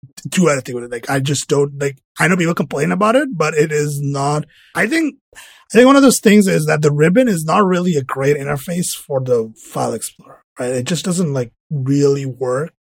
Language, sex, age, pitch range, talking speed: English, male, 30-49, 130-175 Hz, 225 wpm